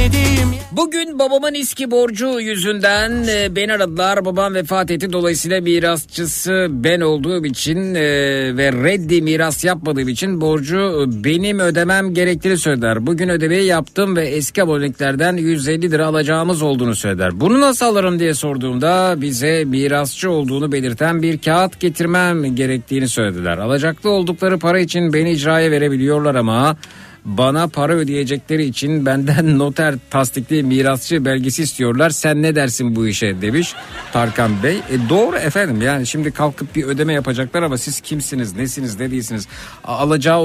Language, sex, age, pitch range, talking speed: Turkish, male, 60-79, 130-175 Hz, 135 wpm